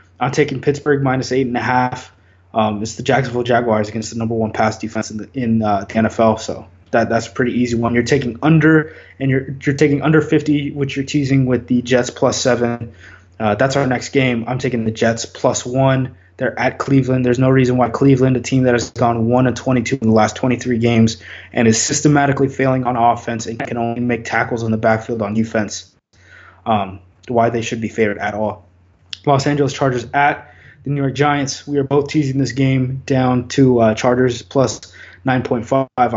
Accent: American